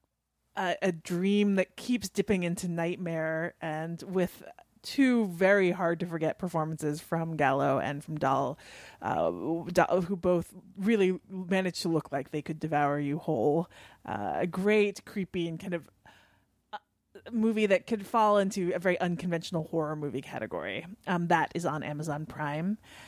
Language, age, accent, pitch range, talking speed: English, 30-49, American, 170-205 Hz, 145 wpm